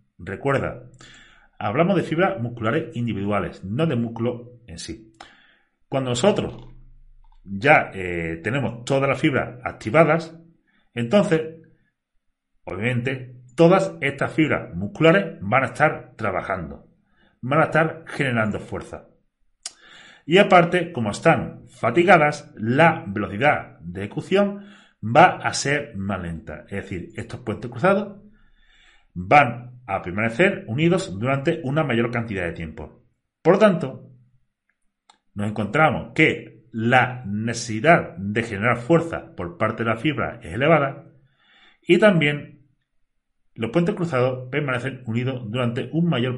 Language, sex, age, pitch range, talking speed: Spanish, male, 40-59, 110-160 Hz, 120 wpm